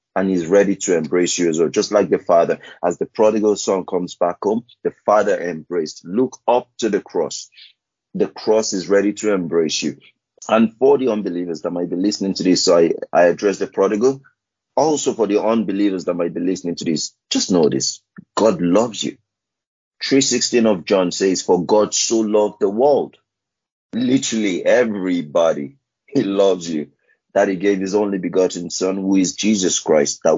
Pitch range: 95-115 Hz